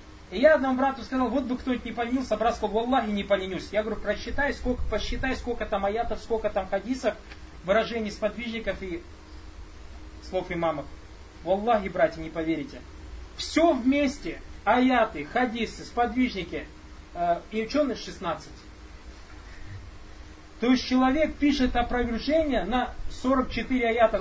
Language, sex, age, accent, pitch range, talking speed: Russian, male, 30-49, native, 185-250 Hz, 130 wpm